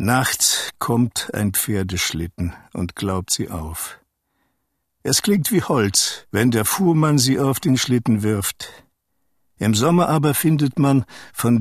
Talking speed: 135 wpm